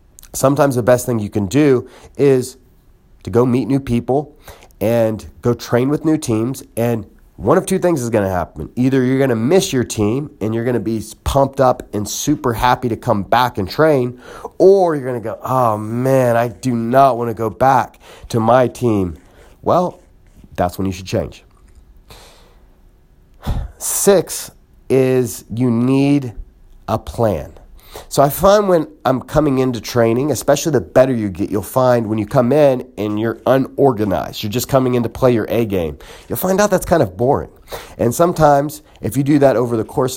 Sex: male